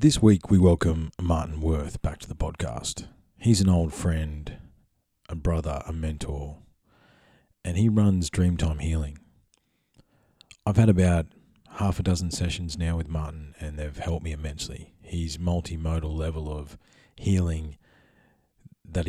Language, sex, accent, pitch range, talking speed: English, male, Australian, 80-95 Hz, 140 wpm